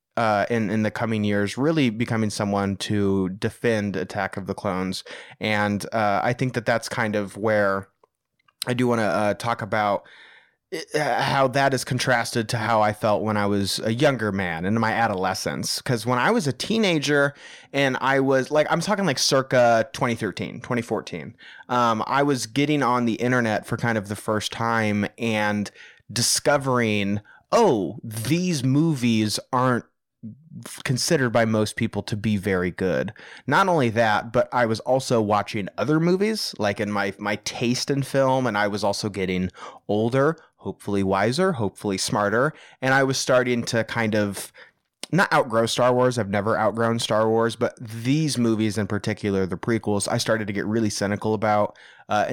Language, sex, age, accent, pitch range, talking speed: English, male, 20-39, American, 105-125 Hz, 170 wpm